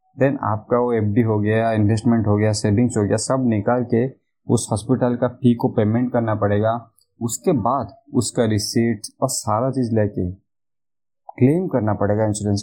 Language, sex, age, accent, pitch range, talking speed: Hindi, male, 20-39, native, 110-130 Hz, 165 wpm